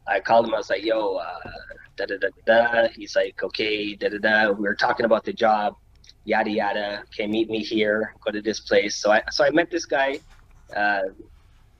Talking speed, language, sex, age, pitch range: 185 wpm, English, male, 20-39, 100-115 Hz